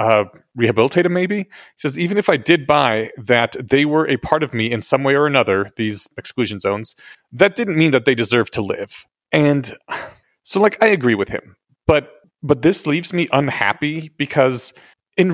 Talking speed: 190 wpm